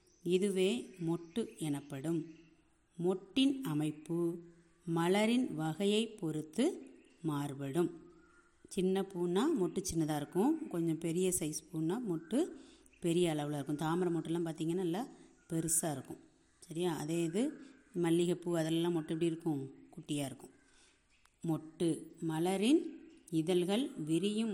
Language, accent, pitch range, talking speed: Tamil, native, 160-230 Hz, 105 wpm